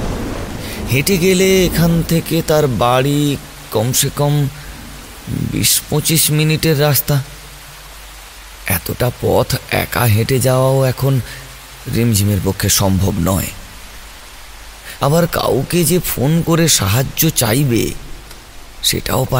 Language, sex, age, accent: Bengali, male, 30-49, native